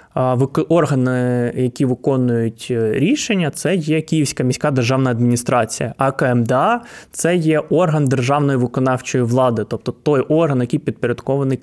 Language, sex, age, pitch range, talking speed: Ukrainian, male, 20-39, 125-155 Hz, 125 wpm